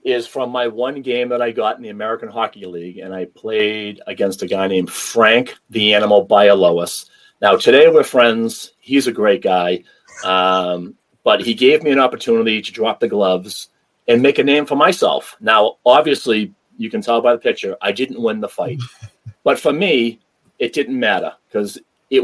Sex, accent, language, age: male, American, English, 40-59